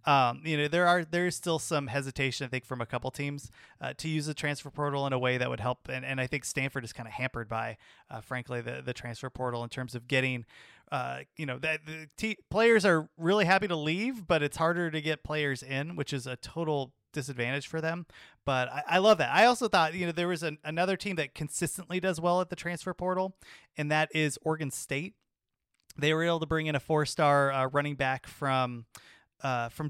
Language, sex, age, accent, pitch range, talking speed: English, male, 30-49, American, 130-160 Hz, 230 wpm